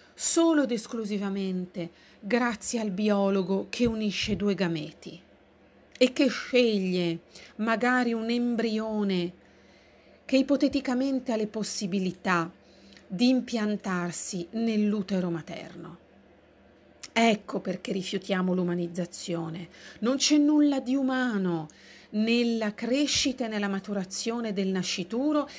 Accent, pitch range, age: native, 190-245 Hz, 40-59